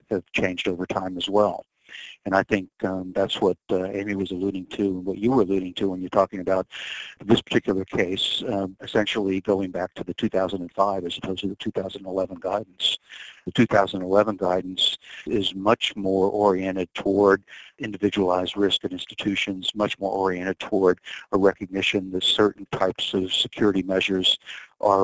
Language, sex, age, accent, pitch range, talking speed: English, male, 50-69, American, 95-100 Hz, 165 wpm